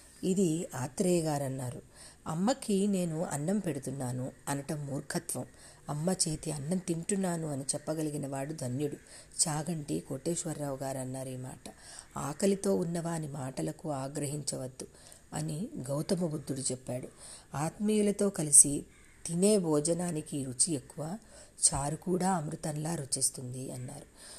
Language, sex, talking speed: Telugu, female, 105 wpm